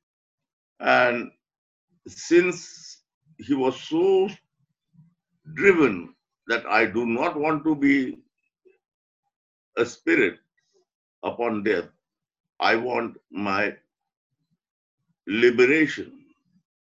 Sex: male